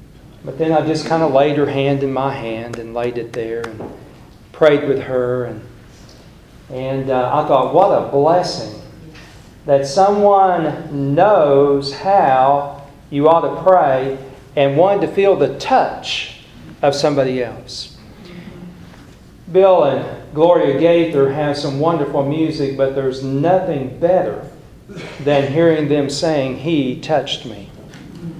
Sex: male